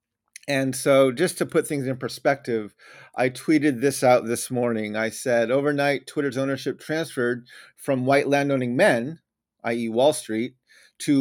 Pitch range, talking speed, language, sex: 115-140 Hz, 150 wpm, English, male